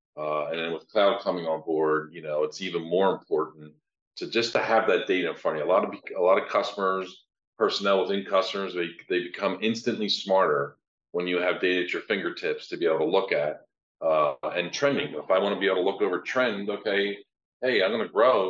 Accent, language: American, English